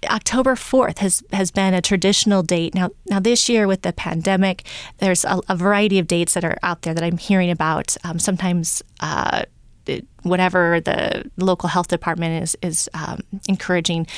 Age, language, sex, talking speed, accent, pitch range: 30-49, English, female, 180 wpm, American, 170-195 Hz